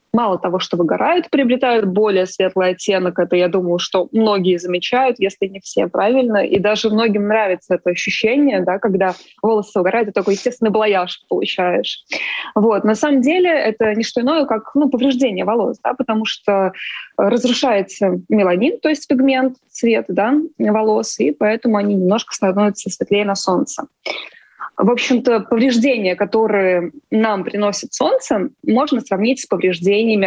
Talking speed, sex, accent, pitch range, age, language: 150 wpm, female, native, 190-245 Hz, 20-39, Russian